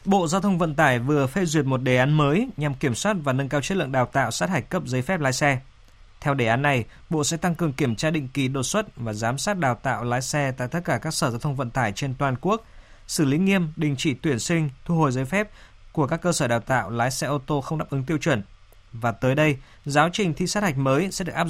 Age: 20-39